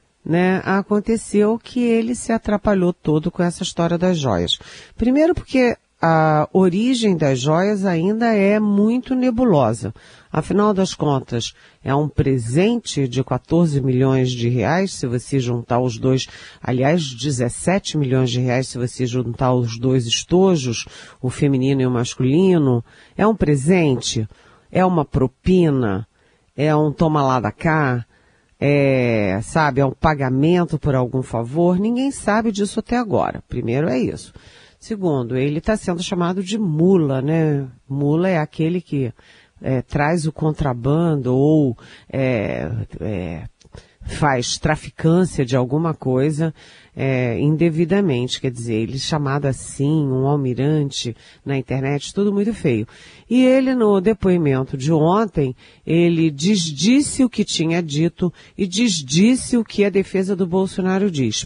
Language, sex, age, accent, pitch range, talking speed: Portuguese, female, 40-59, Brazilian, 130-185 Hz, 135 wpm